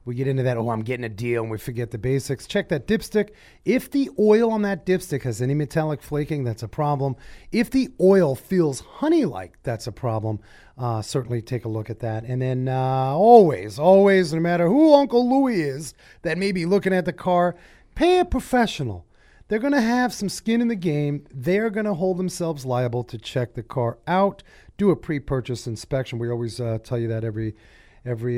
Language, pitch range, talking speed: English, 120-180 Hz, 205 wpm